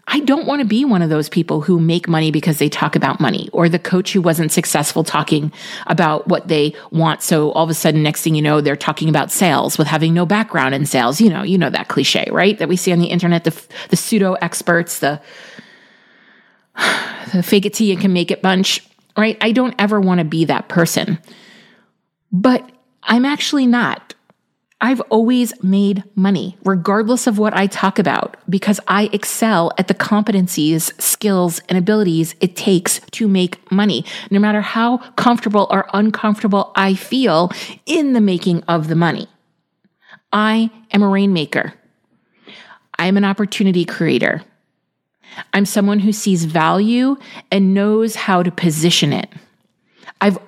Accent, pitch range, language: American, 170-210 Hz, English